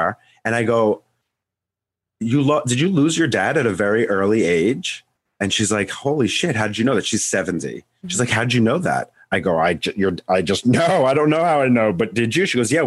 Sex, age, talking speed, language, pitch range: male, 30-49, 250 wpm, English, 105-125 Hz